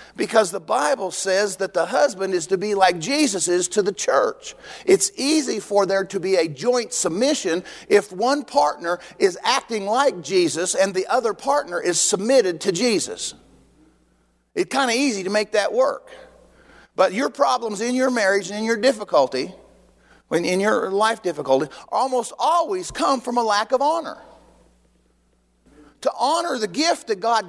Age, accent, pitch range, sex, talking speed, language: 40-59, American, 200-295 Hz, male, 170 wpm, English